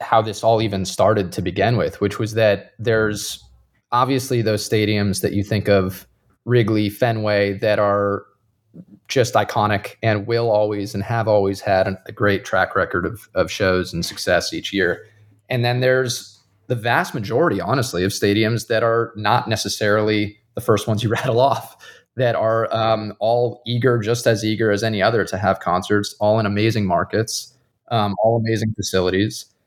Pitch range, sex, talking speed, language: 100-115 Hz, male, 170 wpm, English